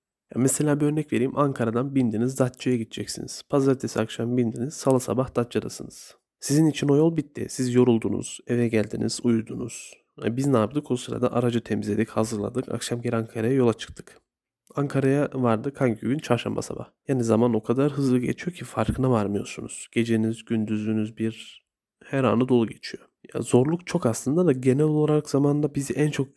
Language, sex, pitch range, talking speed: Turkish, male, 115-135 Hz, 160 wpm